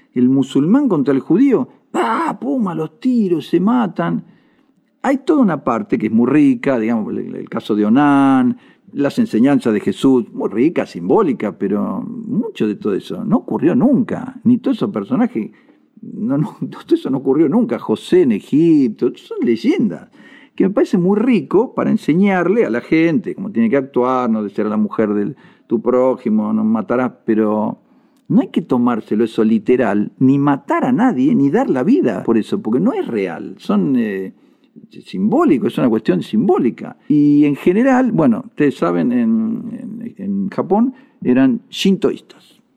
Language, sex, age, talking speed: Spanish, male, 50-69, 165 wpm